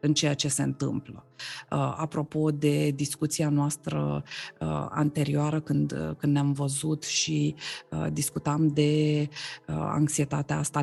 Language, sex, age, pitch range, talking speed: Romanian, female, 20-39, 145-160 Hz, 105 wpm